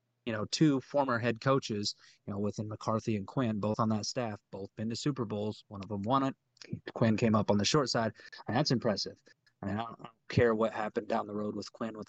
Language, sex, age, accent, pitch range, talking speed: English, male, 30-49, American, 105-125 Hz, 245 wpm